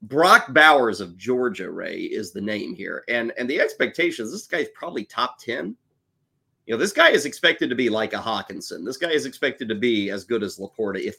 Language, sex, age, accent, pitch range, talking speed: English, male, 30-49, American, 115-185 Hz, 215 wpm